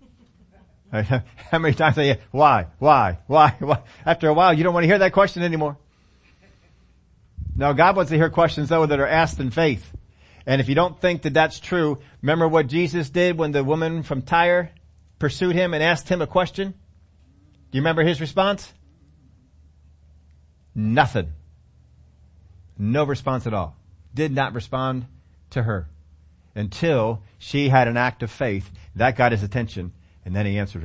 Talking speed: 165 wpm